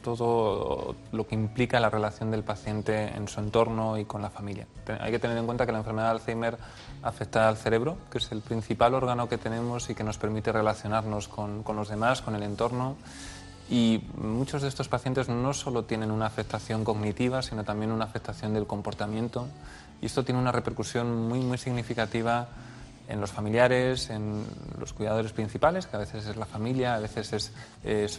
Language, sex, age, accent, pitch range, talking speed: Spanish, male, 20-39, Spanish, 105-120 Hz, 190 wpm